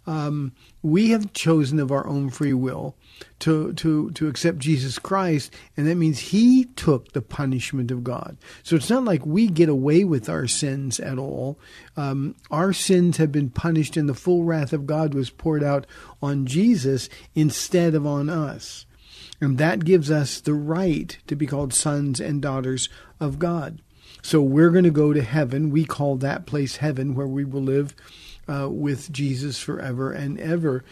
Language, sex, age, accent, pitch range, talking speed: English, male, 50-69, American, 135-160 Hz, 180 wpm